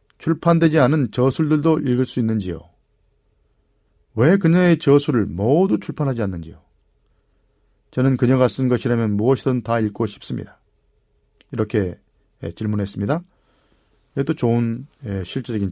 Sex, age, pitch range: male, 40-59, 105-145 Hz